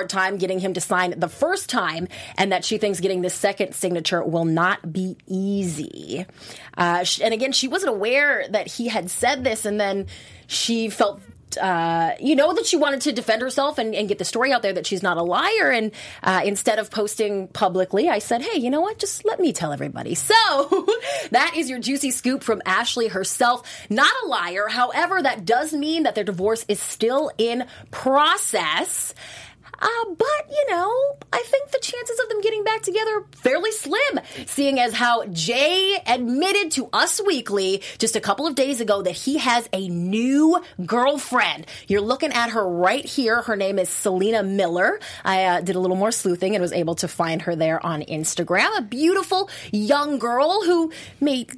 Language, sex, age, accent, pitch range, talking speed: English, female, 30-49, American, 190-300 Hz, 190 wpm